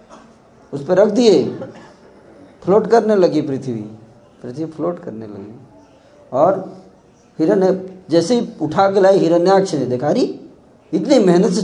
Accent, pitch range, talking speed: native, 130-210 Hz, 135 wpm